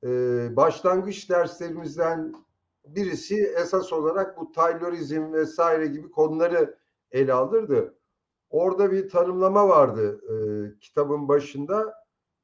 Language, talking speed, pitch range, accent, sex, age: Turkish, 95 wpm, 155-210 Hz, native, male, 50-69